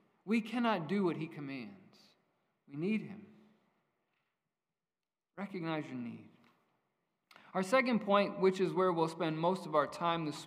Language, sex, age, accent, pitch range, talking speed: English, male, 40-59, American, 150-195 Hz, 145 wpm